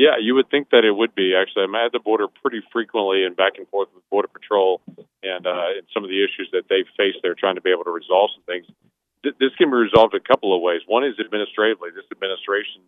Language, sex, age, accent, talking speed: English, male, 40-59, American, 255 wpm